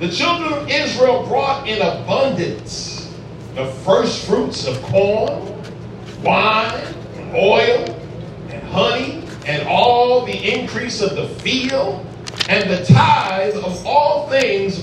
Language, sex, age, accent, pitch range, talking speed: English, male, 40-59, American, 205-320 Hz, 120 wpm